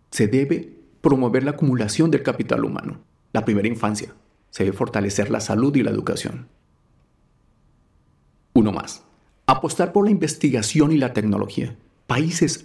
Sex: male